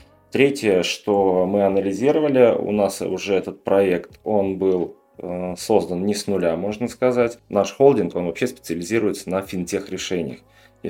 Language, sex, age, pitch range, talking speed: Russian, male, 20-39, 90-105 Hz, 140 wpm